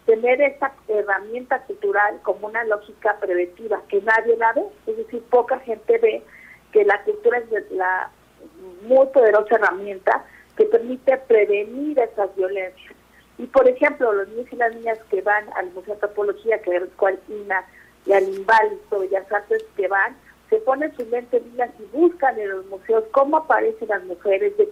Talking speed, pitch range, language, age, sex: 170 wpm, 195-265 Hz, Spanish, 50-69, female